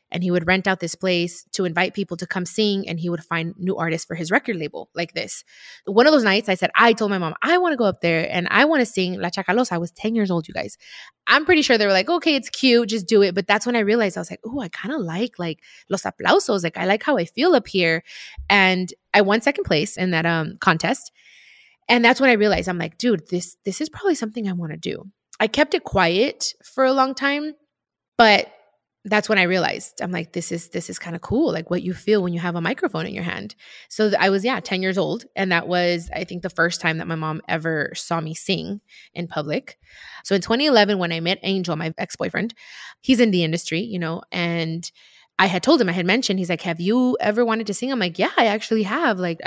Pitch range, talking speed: 175-225 Hz, 260 wpm